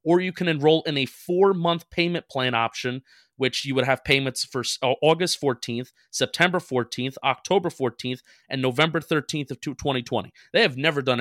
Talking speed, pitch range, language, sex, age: 165 wpm, 125-160 Hz, English, male, 30-49